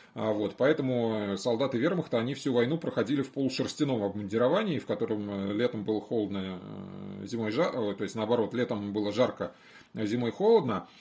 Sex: male